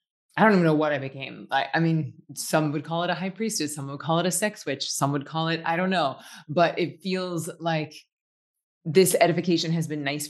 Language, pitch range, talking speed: English, 145-170 Hz, 235 wpm